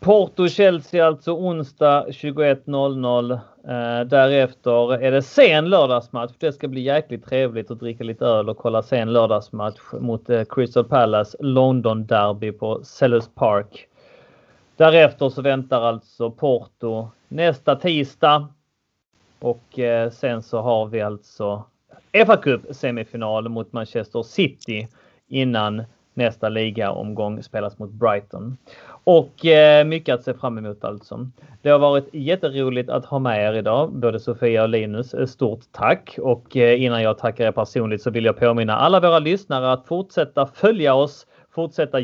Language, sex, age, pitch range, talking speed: Swedish, male, 30-49, 115-150 Hz, 135 wpm